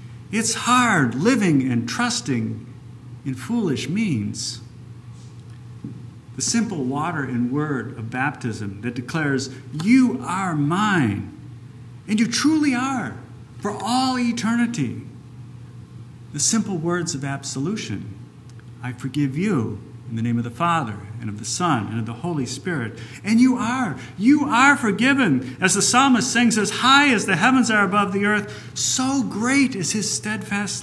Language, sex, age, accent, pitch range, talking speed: English, male, 50-69, American, 120-200 Hz, 145 wpm